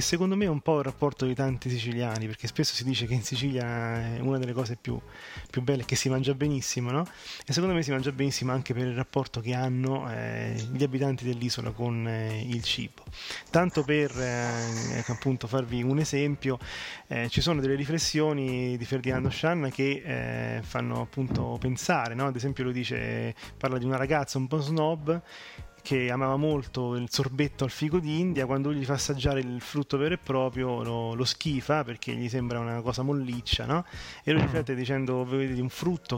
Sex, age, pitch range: male, 20-39, 120-140 Hz